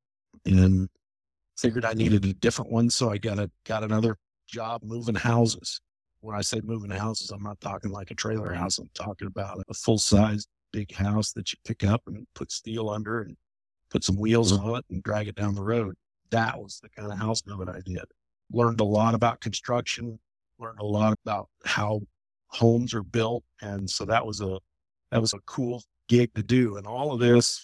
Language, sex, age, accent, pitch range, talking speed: English, male, 50-69, American, 100-120 Hz, 205 wpm